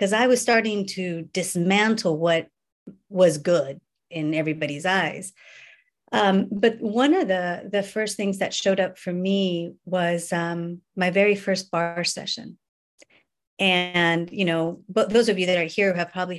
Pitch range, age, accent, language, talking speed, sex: 175-225 Hz, 40-59, American, English, 155 wpm, female